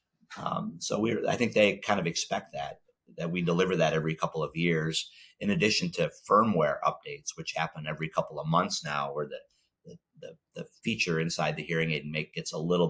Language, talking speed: English, 205 wpm